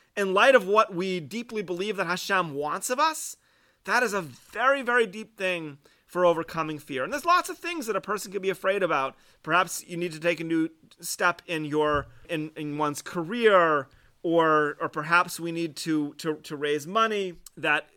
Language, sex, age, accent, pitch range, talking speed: English, male, 30-49, American, 150-185 Hz, 195 wpm